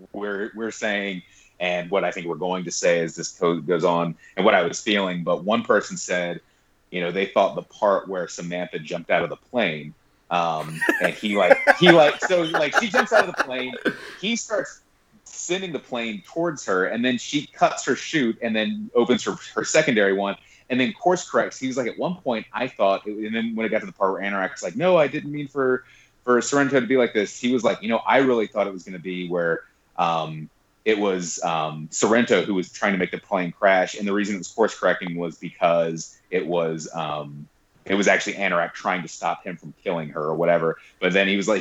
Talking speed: 235 wpm